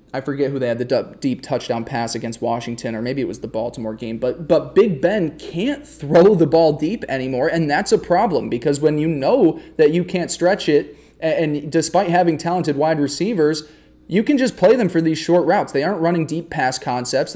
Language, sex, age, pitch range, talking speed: English, male, 20-39, 145-180 Hz, 215 wpm